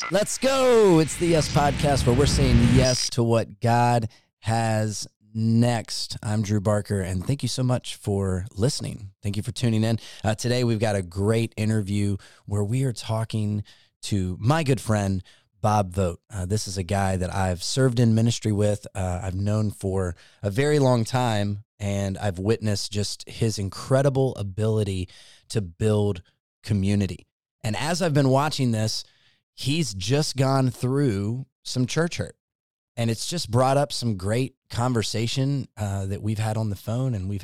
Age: 30-49